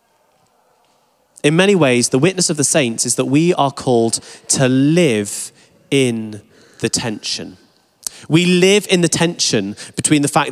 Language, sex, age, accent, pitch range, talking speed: English, male, 30-49, British, 145-195 Hz, 150 wpm